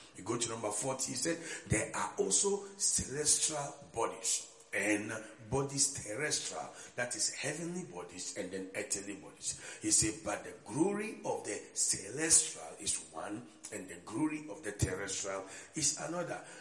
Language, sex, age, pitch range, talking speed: English, male, 50-69, 110-165 Hz, 150 wpm